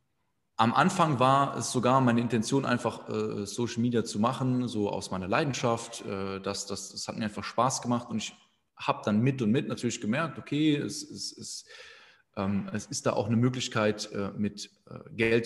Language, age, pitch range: German, 20-39, 105-130 Hz